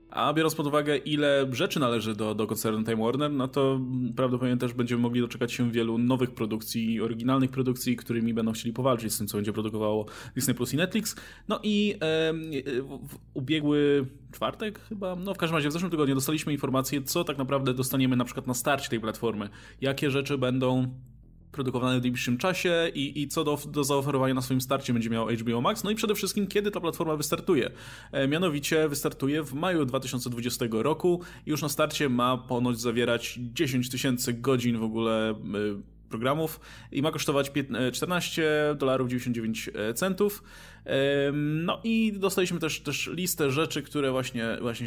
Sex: male